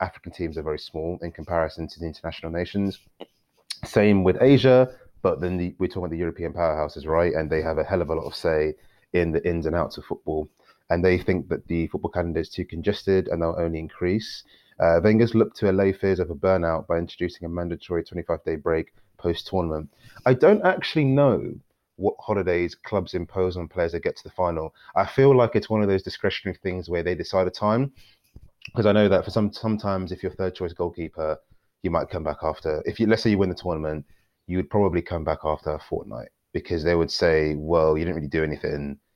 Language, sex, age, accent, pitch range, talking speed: English, male, 30-49, British, 80-95 Hz, 220 wpm